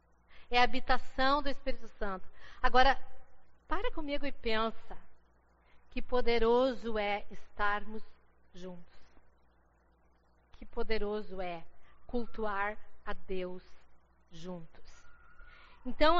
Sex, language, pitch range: female, Portuguese, 210-265 Hz